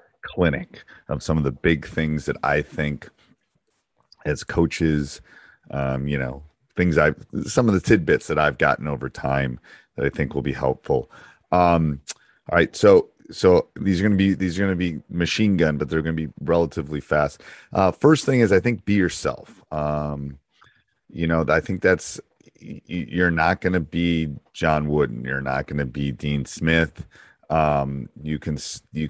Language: English